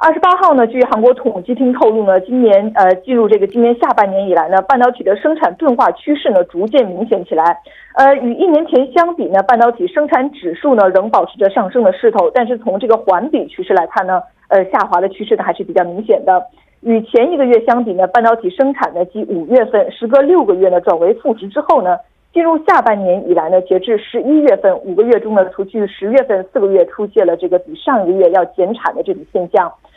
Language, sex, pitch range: Korean, female, 200-310 Hz